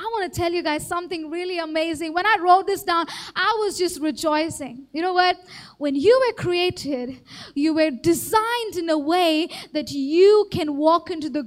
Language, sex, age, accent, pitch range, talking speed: English, female, 20-39, Indian, 325-420 Hz, 190 wpm